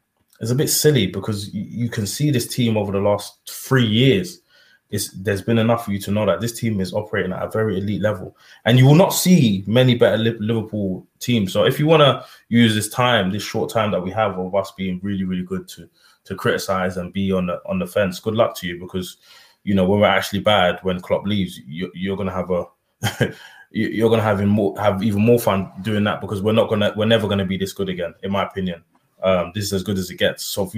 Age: 20-39